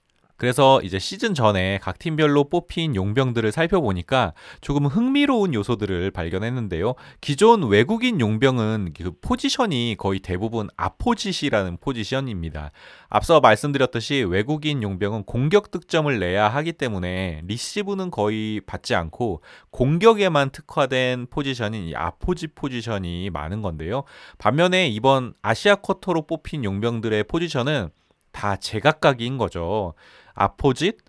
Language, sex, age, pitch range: Korean, male, 30-49, 100-160 Hz